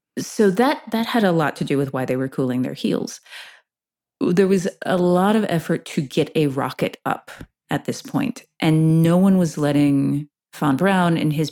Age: 40-59